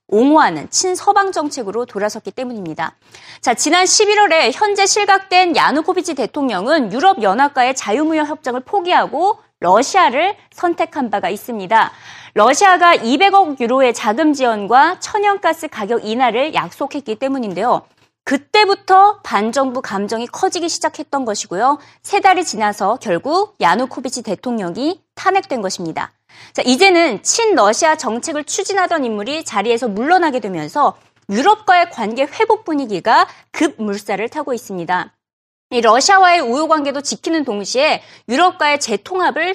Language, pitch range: Korean, 230-365 Hz